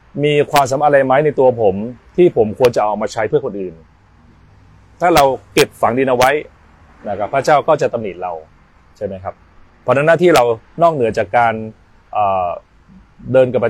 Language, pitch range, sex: Thai, 100-145 Hz, male